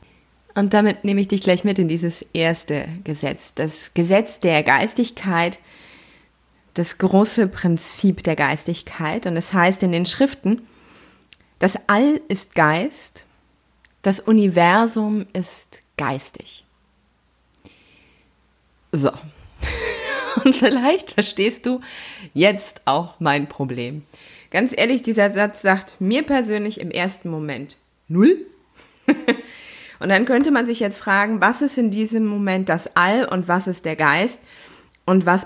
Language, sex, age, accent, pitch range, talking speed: German, female, 20-39, German, 175-220 Hz, 130 wpm